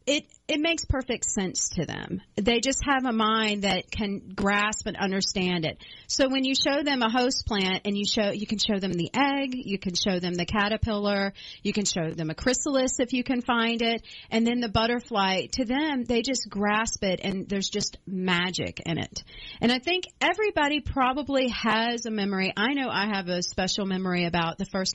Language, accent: English, American